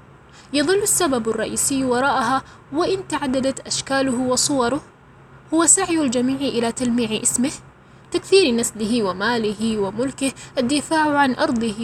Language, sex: Arabic, female